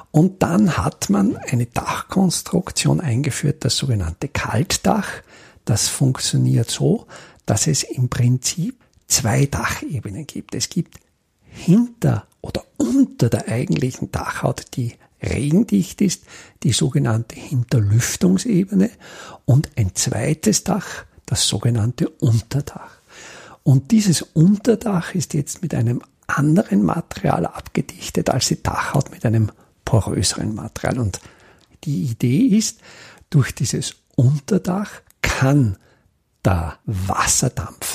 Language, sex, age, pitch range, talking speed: German, male, 50-69, 115-165 Hz, 110 wpm